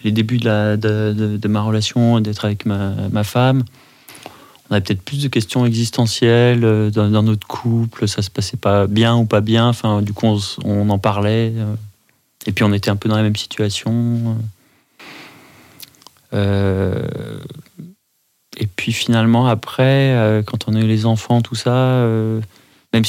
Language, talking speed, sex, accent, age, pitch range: French, 170 wpm, male, French, 30-49, 105-120 Hz